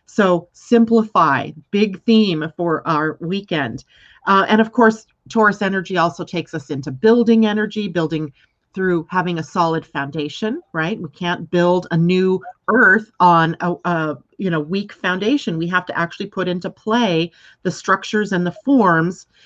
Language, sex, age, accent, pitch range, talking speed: English, female, 40-59, American, 165-200 Hz, 150 wpm